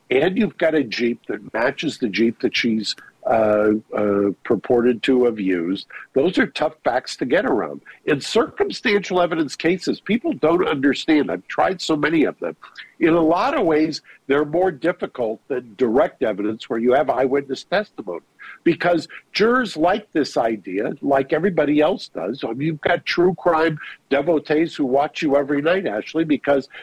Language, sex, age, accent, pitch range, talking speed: English, male, 50-69, American, 135-175 Hz, 165 wpm